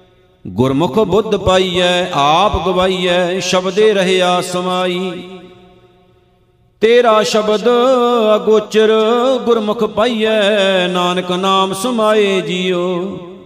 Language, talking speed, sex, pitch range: Punjabi, 75 wpm, male, 180-210 Hz